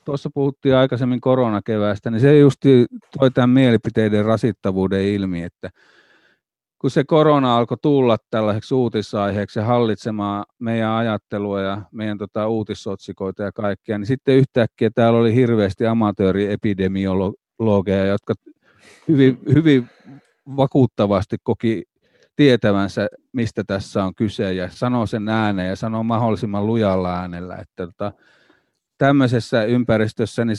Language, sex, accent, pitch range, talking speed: Finnish, male, native, 100-120 Hz, 120 wpm